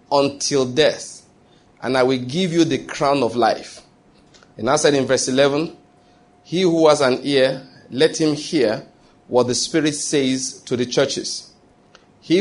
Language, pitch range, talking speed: English, 125-155 Hz, 160 wpm